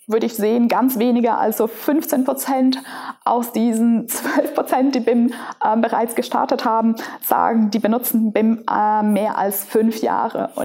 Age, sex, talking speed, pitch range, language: 20-39, female, 160 wpm, 235-280 Hz, German